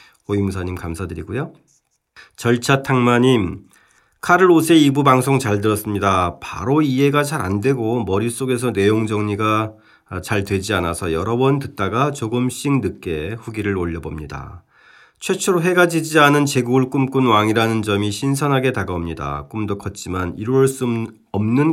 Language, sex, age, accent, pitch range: Korean, male, 40-59, native, 95-135 Hz